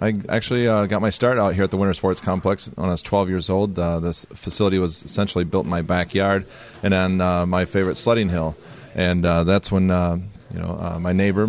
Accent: American